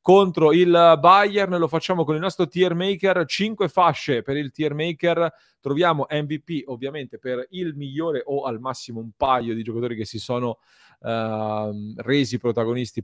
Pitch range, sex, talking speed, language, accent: 115-155 Hz, male, 160 wpm, Italian, native